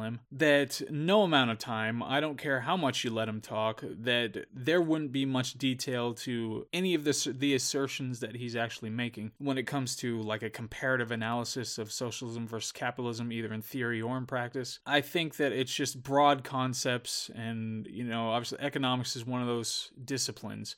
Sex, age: male, 20-39